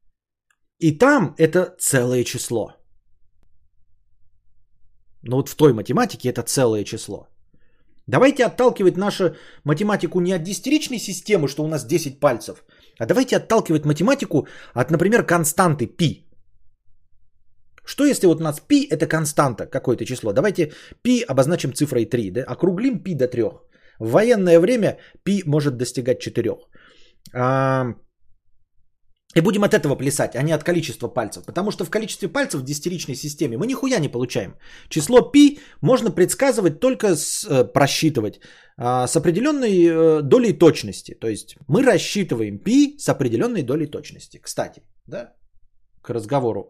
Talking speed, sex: 135 wpm, male